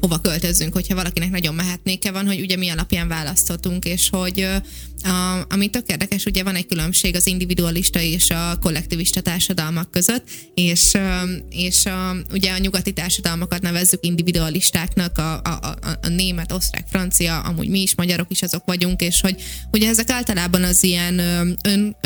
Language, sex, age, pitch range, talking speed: Hungarian, female, 20-39, 175-195 Hz, 155 wpm